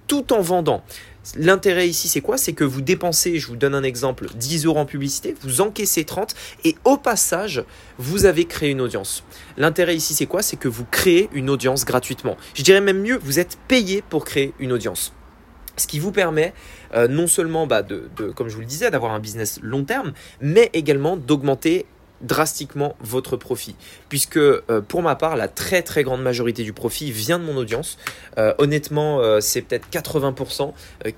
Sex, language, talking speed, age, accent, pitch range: male, French, 190 wpm, 20-39, French, 120-170 Hz